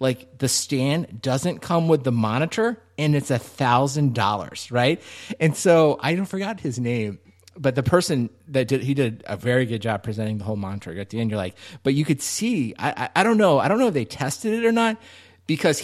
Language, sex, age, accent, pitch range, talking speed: English, male, 30-49, American, 115-150 Hz, 225 wpm